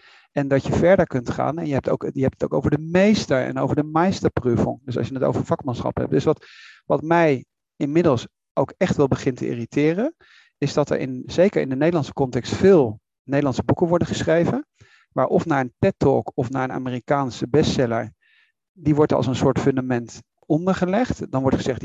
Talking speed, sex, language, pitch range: 200 wpm, male, Dutch, 130-170 Hz